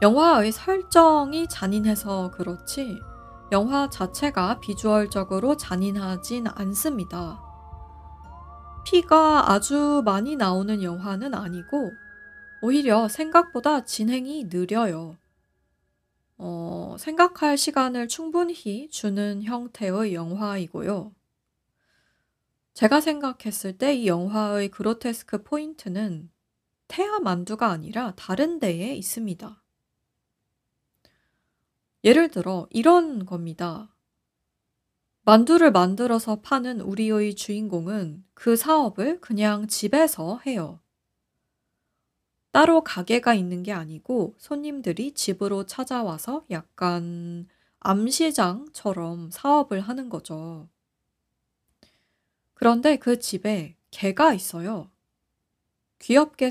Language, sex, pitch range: Korean, female, 185-275 Hz